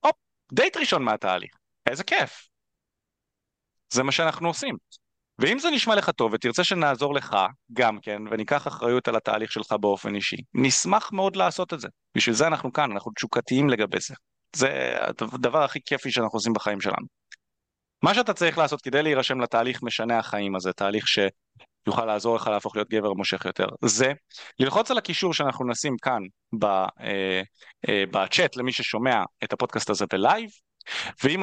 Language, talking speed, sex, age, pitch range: Hebrew, 160 wpm, male, 30-49, 110-155 Hz